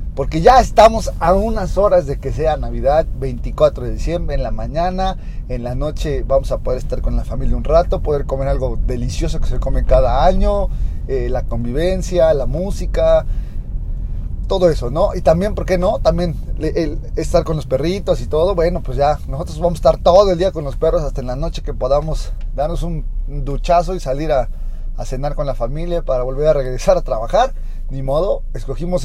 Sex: male